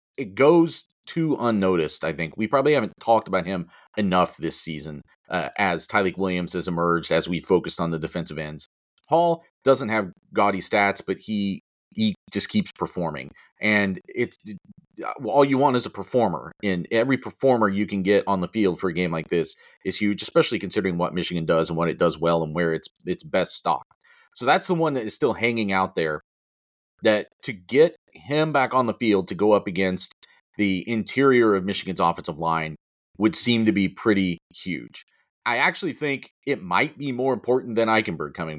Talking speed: 195 wpm